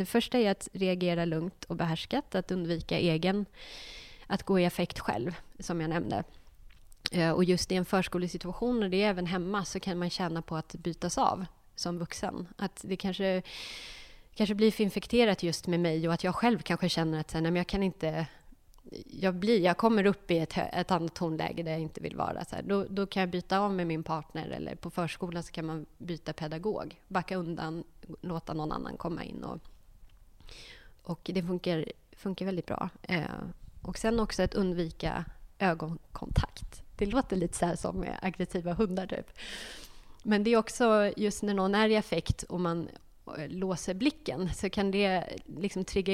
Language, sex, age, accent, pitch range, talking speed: English, female, 20-39, Swedish, 170-200 Hz, 185 wpm